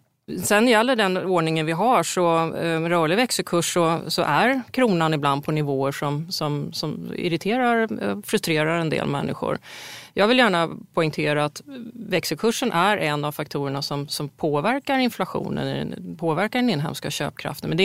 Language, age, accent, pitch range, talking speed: Swedish, 30-49, native, 155-215 Hz, 150 wpm